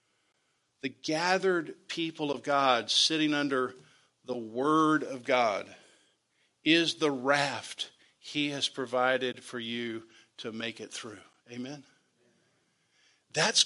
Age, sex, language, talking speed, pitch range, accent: 50-69, male, English, 110 wpm, 155-205 Hz, American